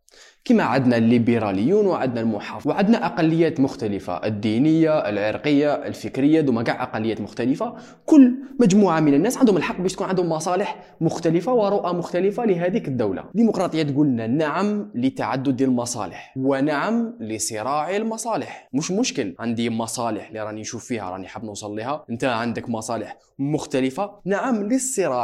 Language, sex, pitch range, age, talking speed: Arabic, male, 120-200 Hz, 20-39, 135 wpm